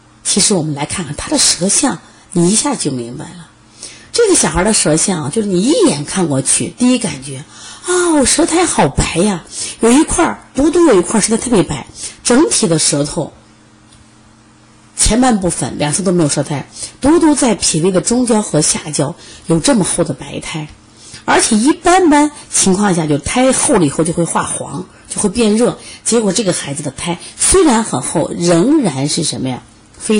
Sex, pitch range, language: female, 135-220 Hz, Chinese